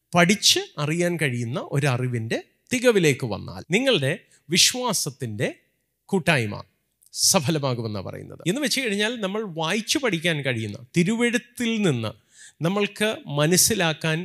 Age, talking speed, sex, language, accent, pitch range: 30-49, 95 wpm, male, Malayalam, native, 140-200 Hz